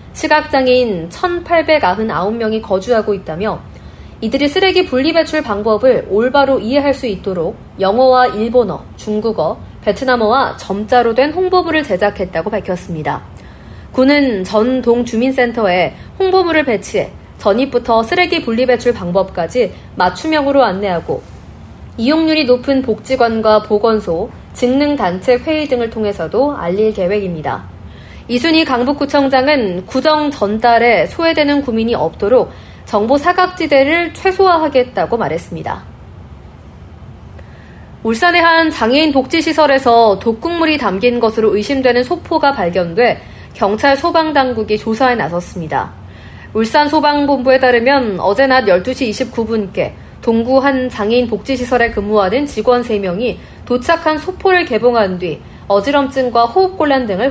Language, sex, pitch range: Korean, female, 210-285 Hz